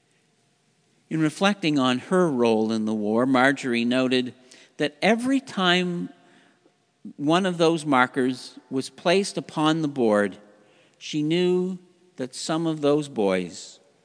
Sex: male